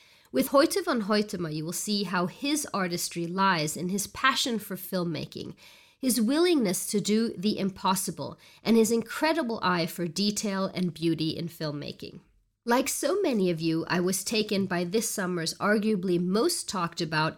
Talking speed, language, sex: 160 wpm, English, female